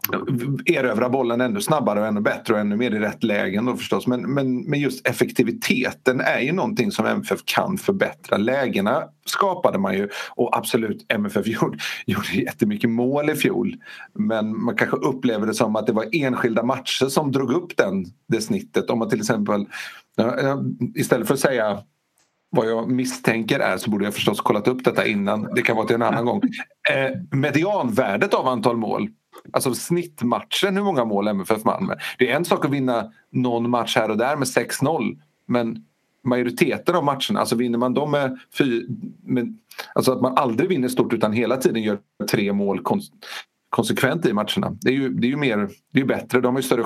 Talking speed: 195 wpm